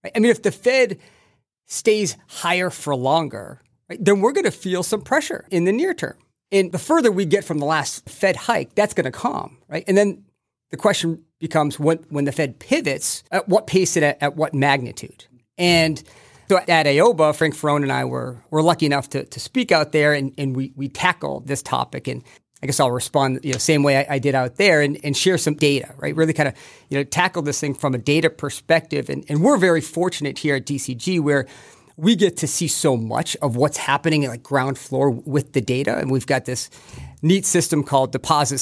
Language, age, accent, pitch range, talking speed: English, 40-59, American, 135-175 Hz, 225 wpm